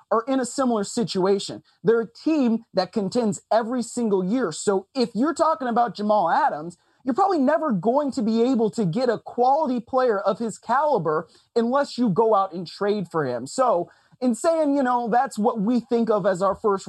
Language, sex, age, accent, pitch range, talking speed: English, male, 30-49, American, 180-230 Hz, 200 wpm